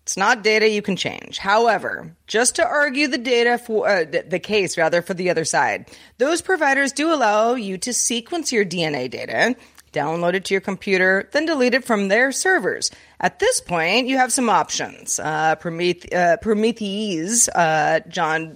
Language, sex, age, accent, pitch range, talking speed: English, female, 30-49, American, 170-255 Hz, 175 wpm